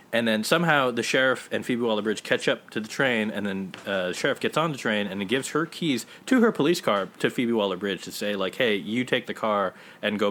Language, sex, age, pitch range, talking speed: English, male, 30-49, 100-145 Hz, 250 wpm